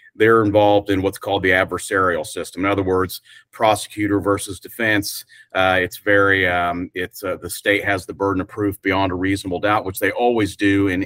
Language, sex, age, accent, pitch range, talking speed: English, male, 40-59, American, 90-105 Hz, 195 wpm